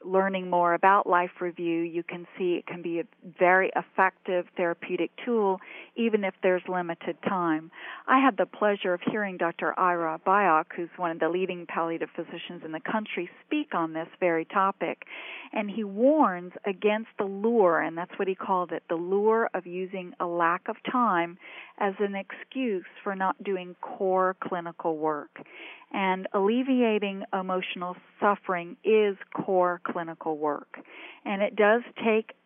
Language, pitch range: English, 175-215 Hz